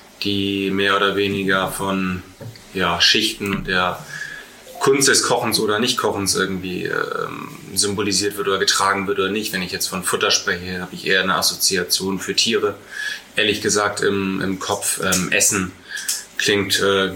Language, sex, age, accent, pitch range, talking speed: English, male, 20-39, German, 95-110 Hz, 155 wpm